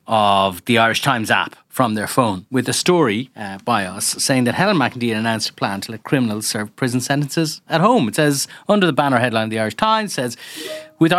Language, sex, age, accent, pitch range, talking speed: English, male, 30-49, Irish, 120-175 Hz, 215 wpm